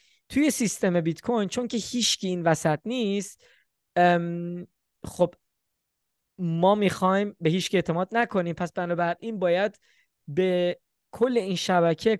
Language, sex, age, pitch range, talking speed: Persian, male, 20-39, 155-200 Hz, 115 wpm